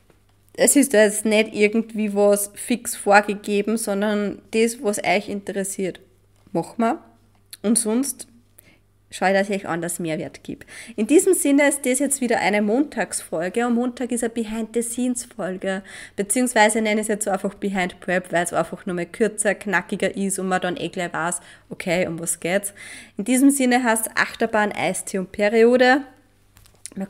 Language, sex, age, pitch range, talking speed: German, female, 20-39, 185-235 Hz, 165 wpm